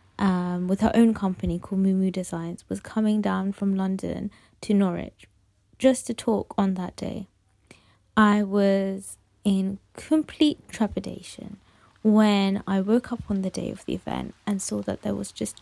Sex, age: female, 20-39